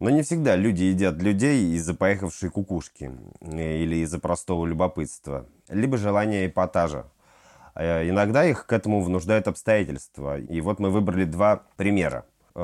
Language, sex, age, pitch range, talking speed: Russian, male, 30-49, 80-100 Hz, 135 wpm